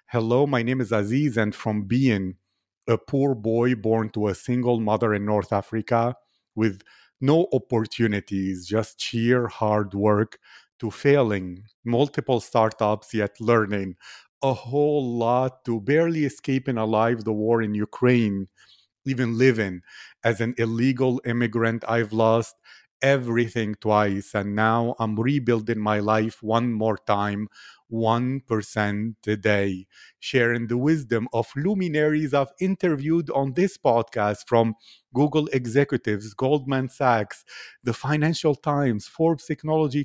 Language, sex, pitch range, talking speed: English, male, 110-135 Hz, 125 wpm